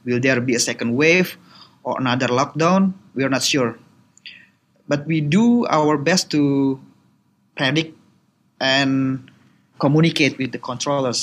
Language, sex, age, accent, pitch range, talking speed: Indonesian, male, 20-39, native, 135-170 Hz, 135 wpm